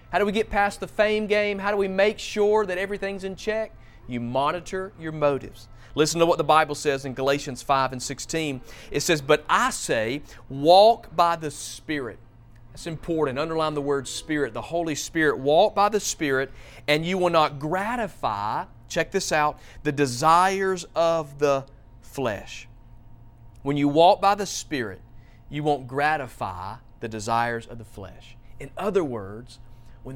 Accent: American